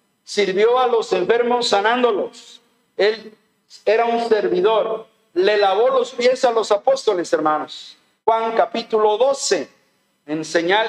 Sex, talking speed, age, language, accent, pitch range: male, 120 wpm, 50-69, Spanish, Mexican, 200-240 Hz